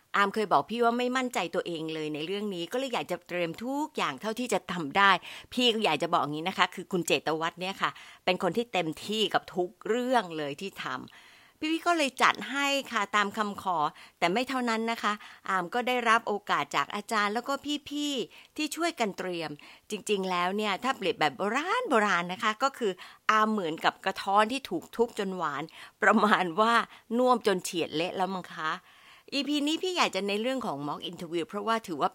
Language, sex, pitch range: Thai, female, 170-235 Hz